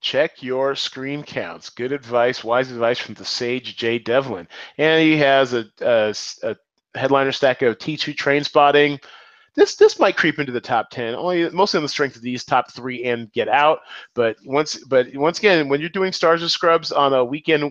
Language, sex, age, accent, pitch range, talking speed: English, male, 30-49, American, 125-185 Hz, 200 wpm